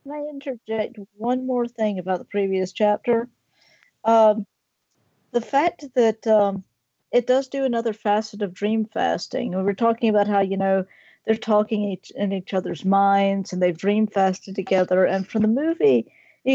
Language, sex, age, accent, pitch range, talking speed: English, female, 40-59, American, 190-225 Hz, 165 wpm